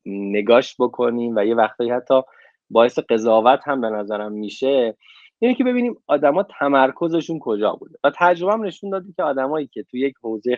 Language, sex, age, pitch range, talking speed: Persian, male, 20-39, 115-165 Hz, 165 wpm